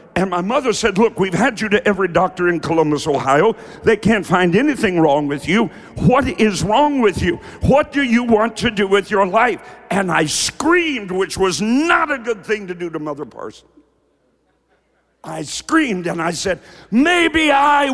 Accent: American